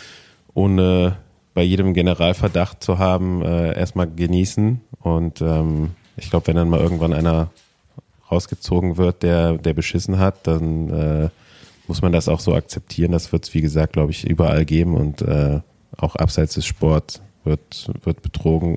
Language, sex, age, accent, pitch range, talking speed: German, male, 30-49, German, 85-100 Hz, 160 wpm